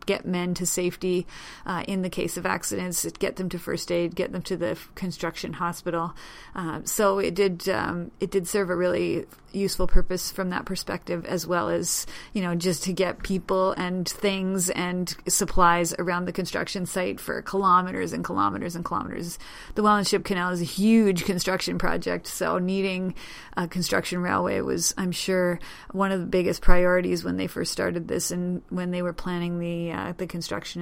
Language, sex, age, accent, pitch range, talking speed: English, female, 30-49, American, 180-200 Hz, 180 wpm